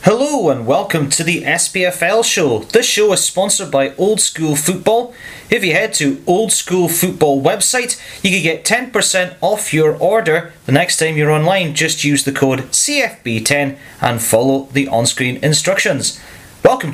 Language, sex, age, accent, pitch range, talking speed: English, male, 30-49, British, 135-185 Hz, 165 wpm